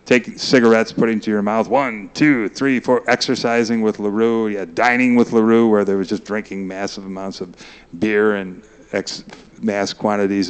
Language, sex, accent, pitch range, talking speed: English, male, American, 105-145 Hz, 170 wpm